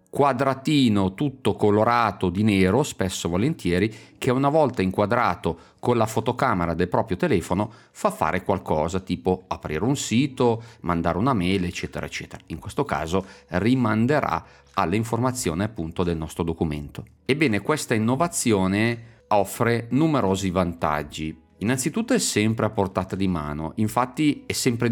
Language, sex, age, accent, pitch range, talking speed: Italian, male, 40-59, native, 90-120 Hz, 130 wpm